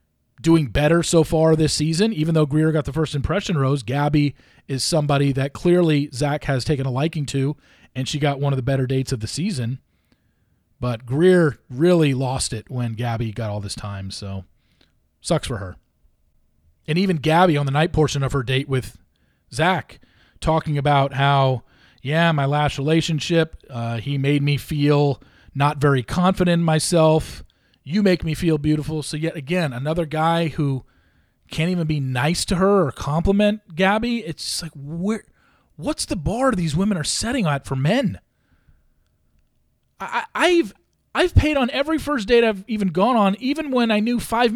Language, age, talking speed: English, 40-59, 170 wpm